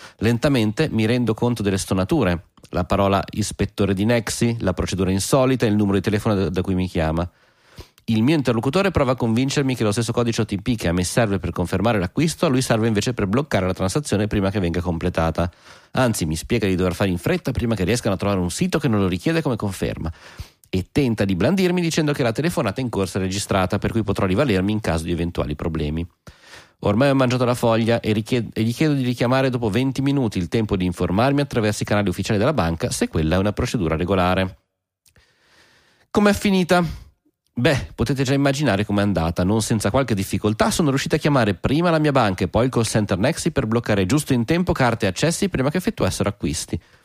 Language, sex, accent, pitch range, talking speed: Italian, male, native, 95-130 Hz, 210 wpm